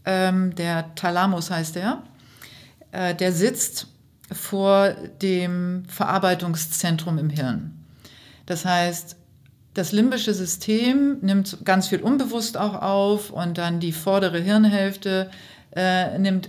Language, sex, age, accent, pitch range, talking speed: German, female, 50-69, German, 165-200 Hz, 100 wpm